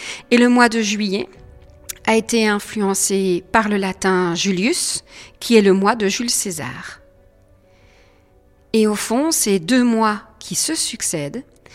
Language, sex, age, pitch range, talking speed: French, female, 50-69, 185-240 Hz, 145 wpm